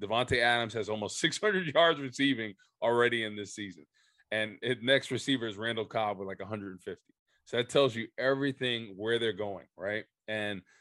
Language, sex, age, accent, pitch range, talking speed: English, male, 20-39, American, 105-130 Hz, 170 wpm